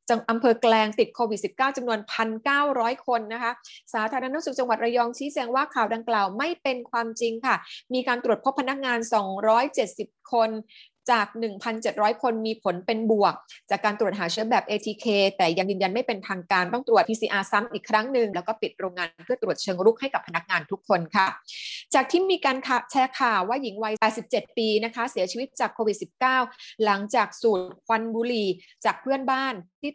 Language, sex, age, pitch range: Thai, female, 20-39, 205-250 Hz